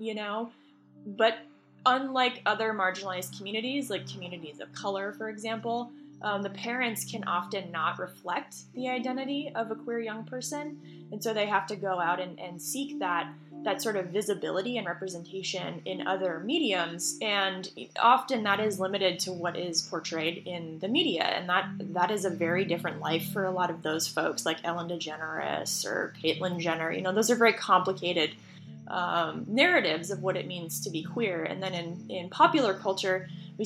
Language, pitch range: English, 170-215 Hz